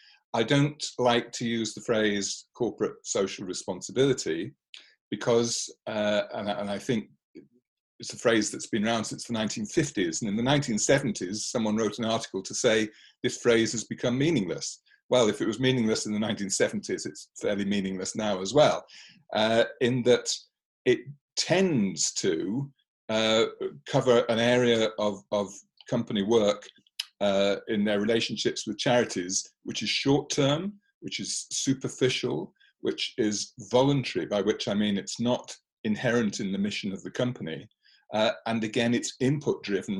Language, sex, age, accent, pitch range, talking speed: English, male, 50-69, British, 105-140 Hz, 150 wpm